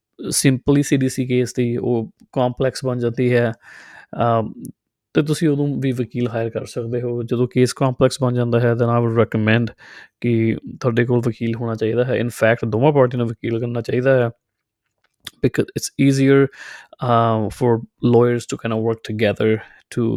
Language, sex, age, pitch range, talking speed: Punjabi, male, 20-39, 115-130 Hz, 175 wpm